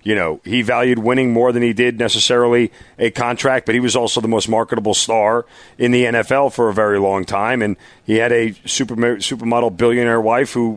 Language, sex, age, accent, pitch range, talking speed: English, male, 40-59, American, 105-130 Hz, 205 wpm